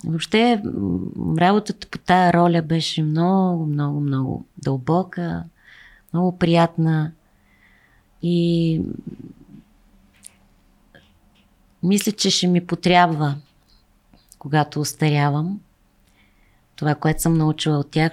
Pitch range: 140-175 Hz